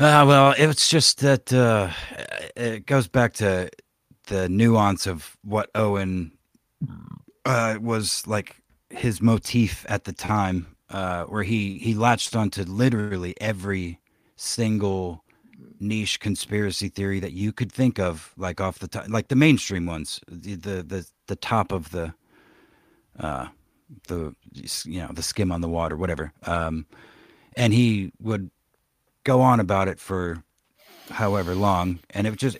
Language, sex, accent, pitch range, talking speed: English, male, American, 90-110 Hz, 145 wpm